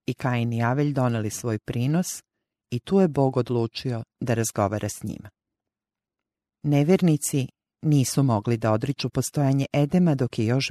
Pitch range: 115-145 Hz